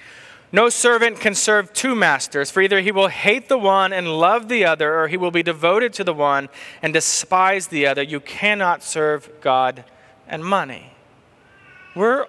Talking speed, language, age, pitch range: 175 wpm, English, 30-49, 130-180 Hz